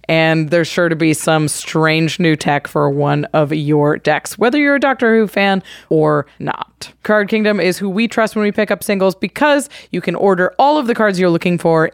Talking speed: 220 wpm